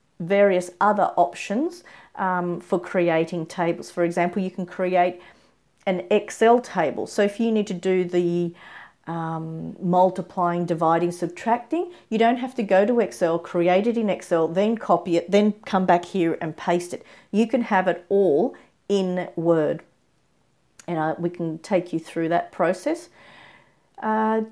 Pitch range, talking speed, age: 175-225 Hz, 155 wpm, 40-59